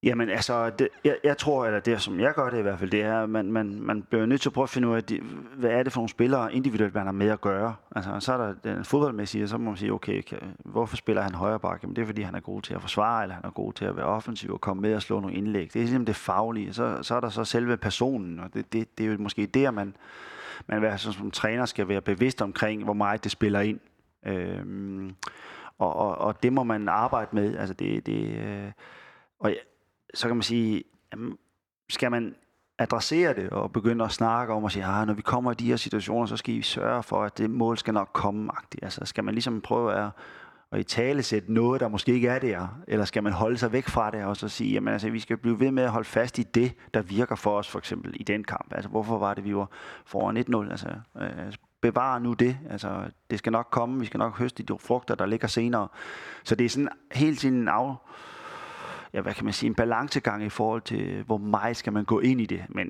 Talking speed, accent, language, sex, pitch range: 260 wpm, native, Danish, male, 105-120 Hz